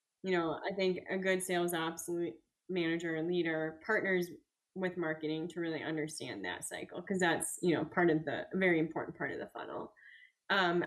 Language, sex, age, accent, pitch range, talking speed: English, female, 10-29, American, 170-195 Hz, 180 wpm